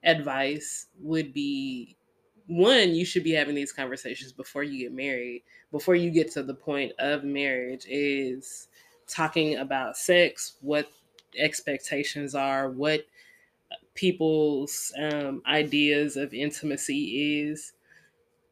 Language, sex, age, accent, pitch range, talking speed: English, female, 20-39, American, 135-175 Hz, 115 wpm